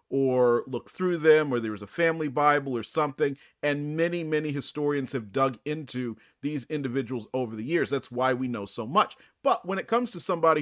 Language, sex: English, male